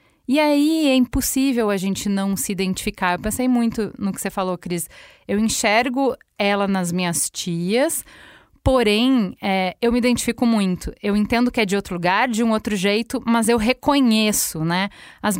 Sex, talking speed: female, 170 wpm